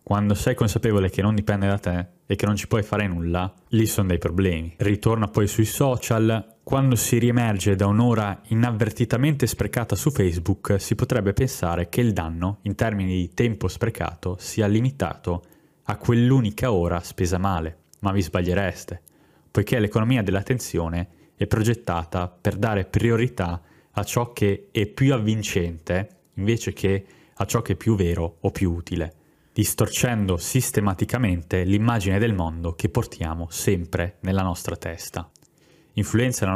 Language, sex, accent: Italian, male, native